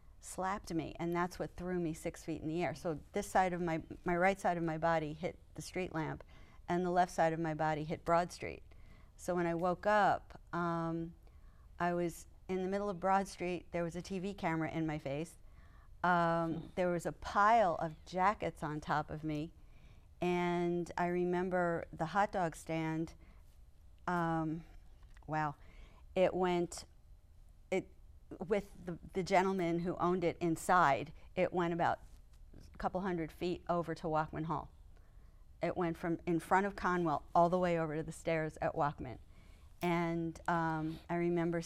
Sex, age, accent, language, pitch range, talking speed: female, 50-69, American, English, 155-175 Hz, 175 wpm